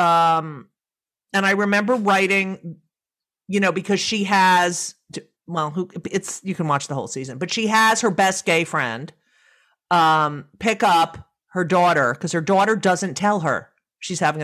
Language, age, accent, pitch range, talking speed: English, 40-59, American, 175-230 Hz, 160 wpm